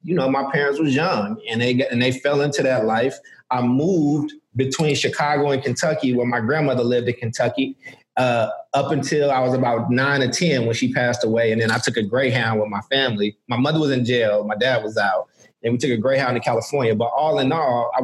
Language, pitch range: English, 120-150 Hz